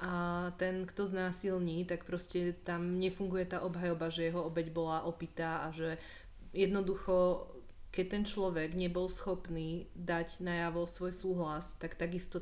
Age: 30-49